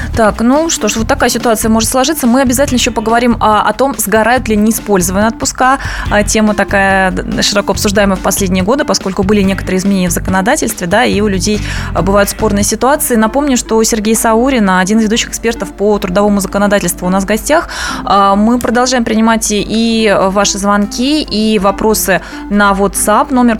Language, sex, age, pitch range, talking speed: Russian, female, 20-39, 200-235 Hz, 170 wpm